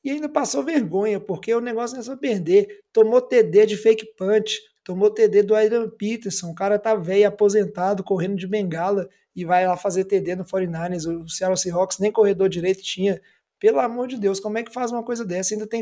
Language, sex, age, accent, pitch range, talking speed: Portuguese, male, 20-39, Brazilian, 185-220 Hz, 215 wpm